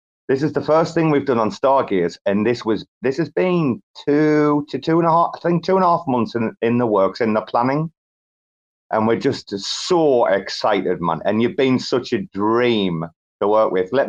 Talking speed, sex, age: 220 wpm, male, 30-49